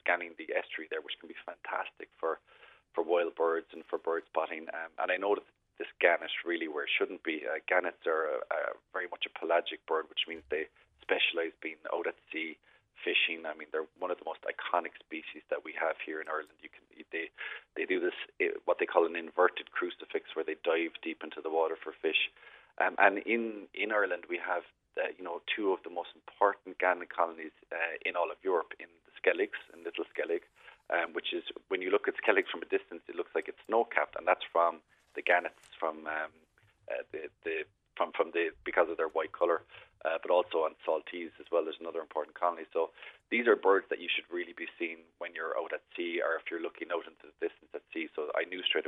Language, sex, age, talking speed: English, male, 30-49, 225 wpm